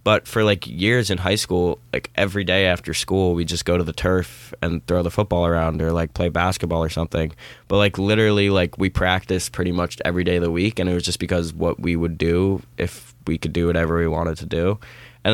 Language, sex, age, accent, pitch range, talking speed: English, male, 20-39, American, 90-115 Hz, 240 wpm